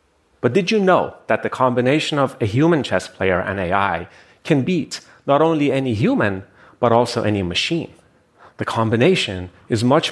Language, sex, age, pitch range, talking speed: English, male, 30-49, 100-145 Hz, 165 wpm